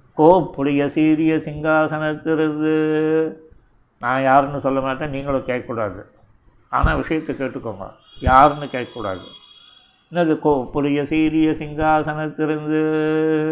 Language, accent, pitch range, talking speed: Tamil, native, 135-155 Hz, 90 wpm